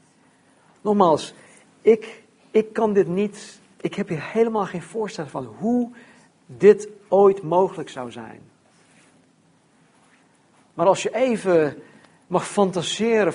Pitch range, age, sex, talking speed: 155-215 Hz, 50-69, male, 110 wpm